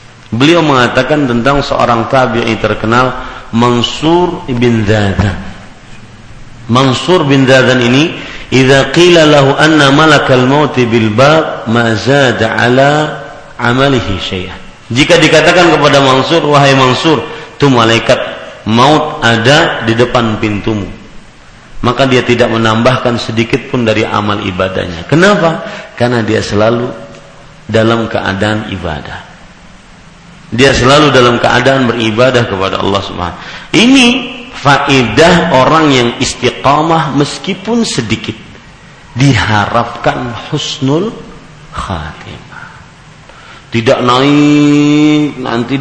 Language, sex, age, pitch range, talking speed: Malay, male, 50-69, 115-145 Hz, 100 wpm